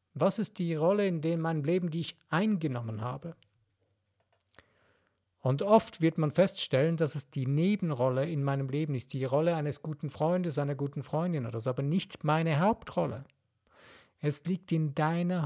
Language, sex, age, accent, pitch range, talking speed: German, male, 50-69, German, 145-180 Hz, 165 wpm